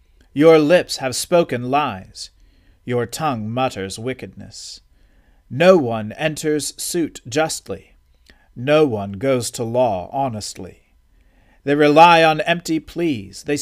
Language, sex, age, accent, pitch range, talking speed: English, male, 40-59, American, 95-145 Hz, 115 wpm